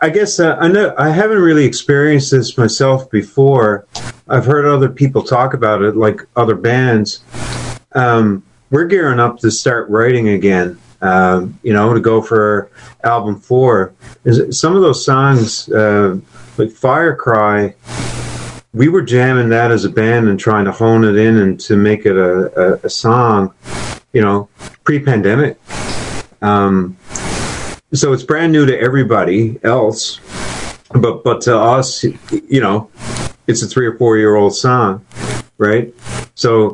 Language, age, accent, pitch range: English, 40-59, American, 105-125 Hz